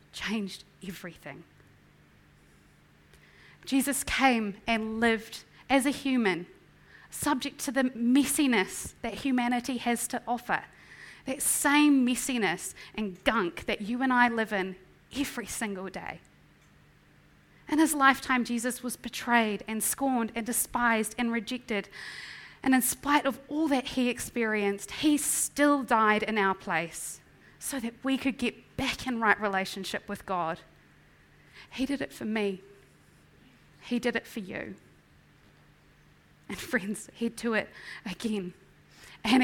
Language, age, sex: English, 30-49, female